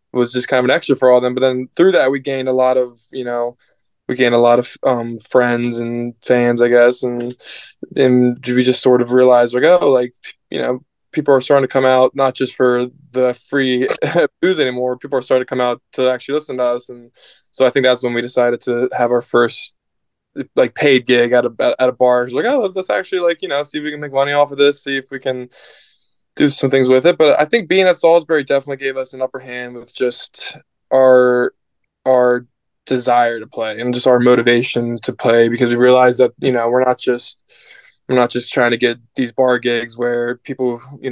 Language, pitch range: English, 120-130 Hz